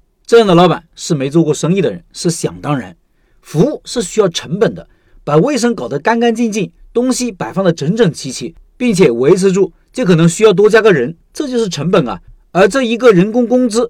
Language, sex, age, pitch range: Chinese, male, 50-69, 160-225 Hz